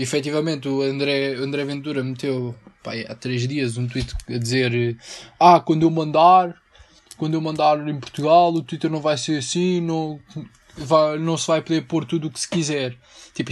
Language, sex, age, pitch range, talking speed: Portuguese, male, 20-39, 140-160 Hz, 195 wpm